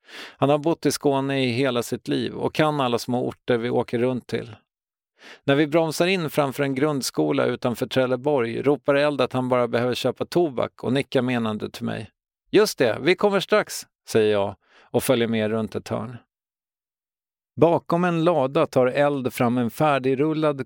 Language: English